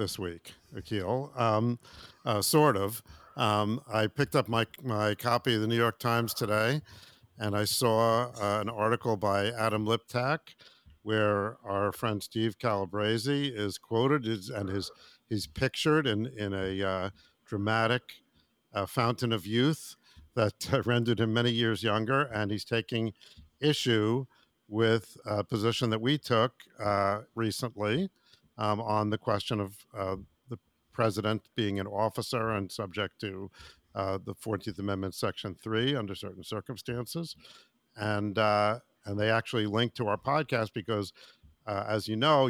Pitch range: 100-120 Hz